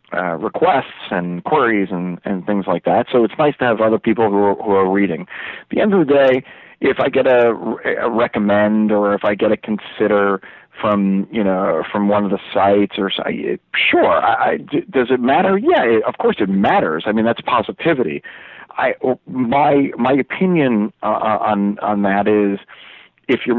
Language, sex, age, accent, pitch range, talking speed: English, male, 40-59, American, 100-110 Hz, 190 wpm